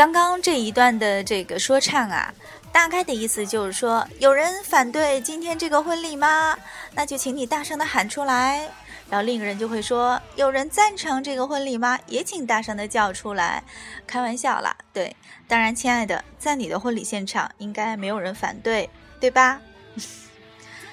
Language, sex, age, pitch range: Chinese, female, 20-39, 210-280 Hz